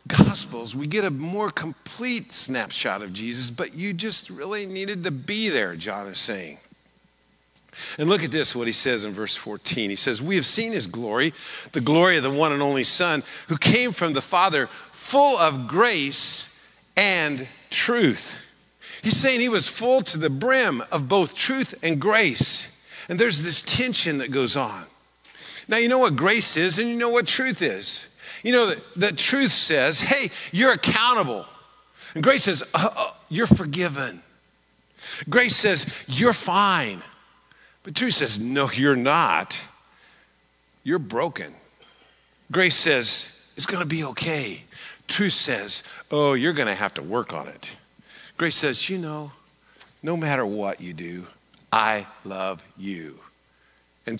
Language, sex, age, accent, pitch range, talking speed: English, male, 50-69, American, 130-210 Hz, 160 wpm